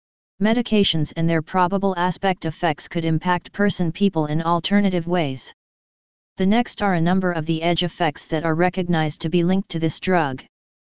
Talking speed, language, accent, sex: 165 wpm, English, American, female